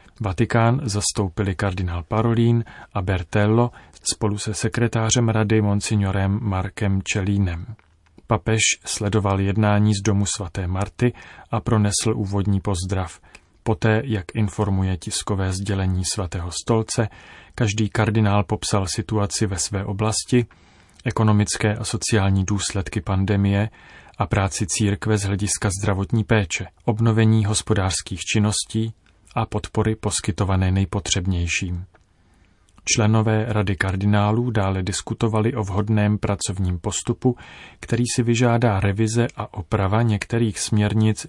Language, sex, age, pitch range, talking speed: Czech, male, 30-49, 95-110 Hz, 110 wpm